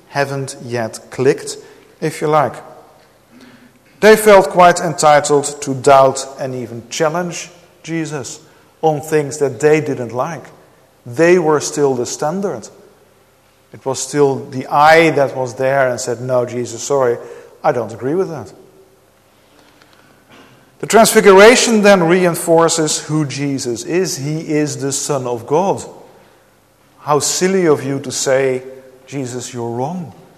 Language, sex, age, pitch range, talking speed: English, male, 50-69, 130-170 Hz, 130 wpm